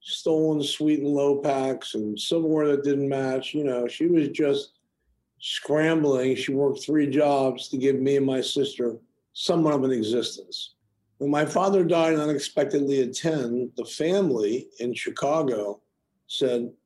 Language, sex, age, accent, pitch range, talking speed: English, male, 50-69, American, 130-155 Hz, 150 wpm